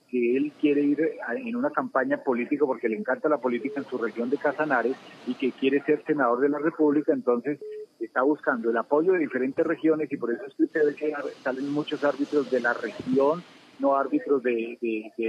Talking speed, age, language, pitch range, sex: 205 wpm, 40-59, Spanish, 125-150 Hz, male